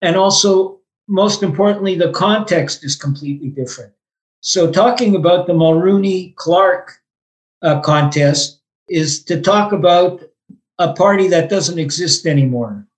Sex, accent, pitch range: male, American, 155-190 Hz